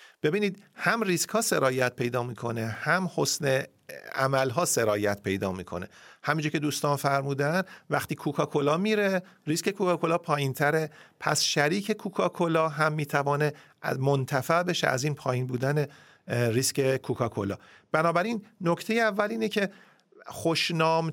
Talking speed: 120 wpm